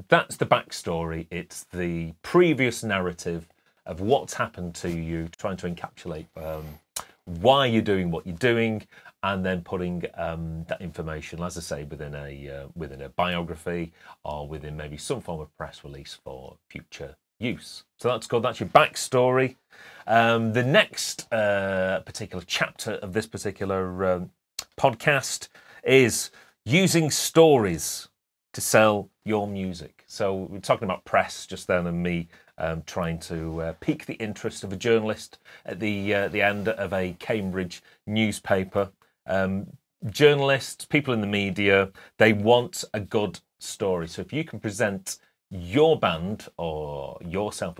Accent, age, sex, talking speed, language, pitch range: British, 30-49, male, 150 wpm, English, 85-110 Hz